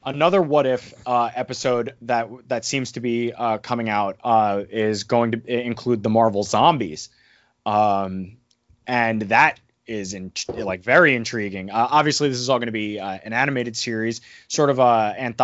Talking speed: 175 wpm